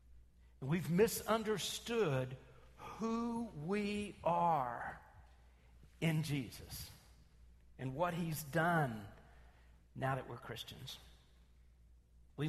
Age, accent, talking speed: 50-69, American, 75 wpm